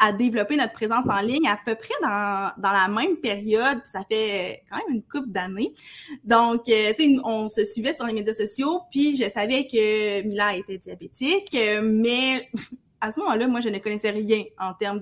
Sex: female